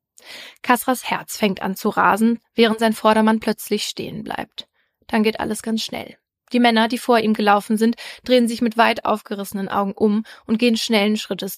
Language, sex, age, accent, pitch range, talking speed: German, female, 20-39, German, 205-235 Hz, 180 wpm